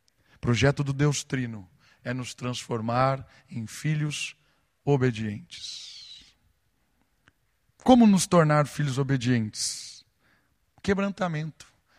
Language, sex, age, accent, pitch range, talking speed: Portuguese, male, 50-69, Brazilian, 140-200 Hz, 85 wpm